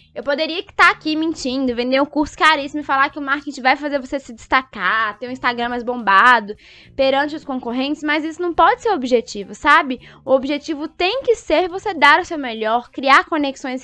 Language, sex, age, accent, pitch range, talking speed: Portuguese, female, 10-29, Brazilian, 255-310 Hz, 205 wpm